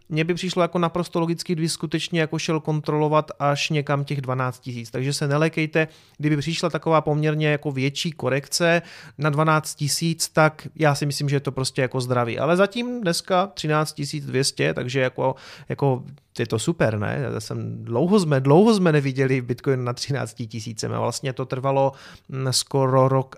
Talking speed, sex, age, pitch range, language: 180 wpm, male, 30-49, 130-160 Hz, Czech